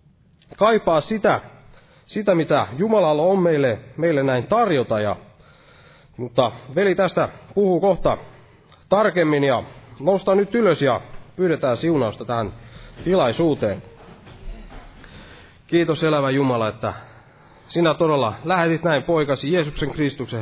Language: Finnish